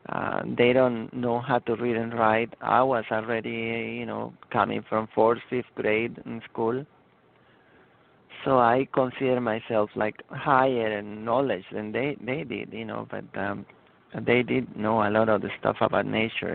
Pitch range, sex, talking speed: 110-125 Hz, male, 170 wpm